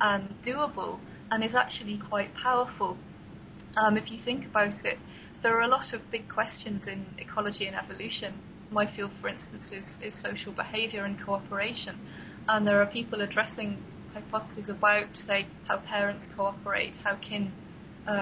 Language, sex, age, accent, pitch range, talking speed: English, female, 20-39, British, 200-225 Hz, 160 wpm